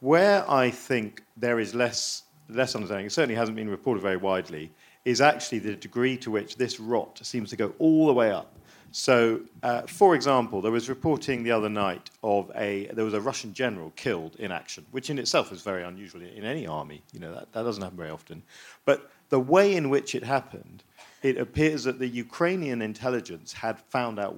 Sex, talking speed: male, 205 wpm